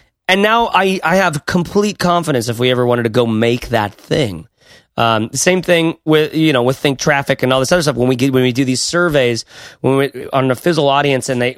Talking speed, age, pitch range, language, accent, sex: 240 wpm, 30-49, 115-155 Hz, English, American, male